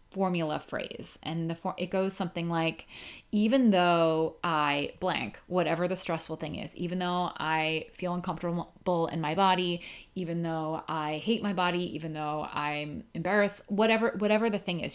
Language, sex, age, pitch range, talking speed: English, female, 20-39, 160-195 Hz, 165 wpm